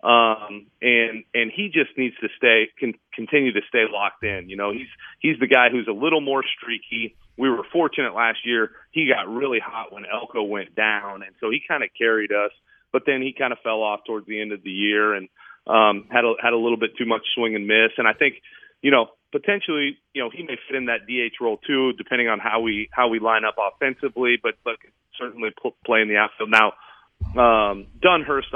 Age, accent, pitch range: 30-49, American, 105-125 Hz